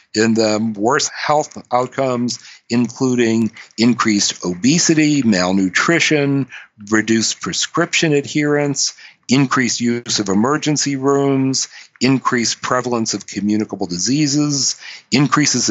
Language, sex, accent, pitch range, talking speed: English, male, American, 105-135 Hz, 90 wpm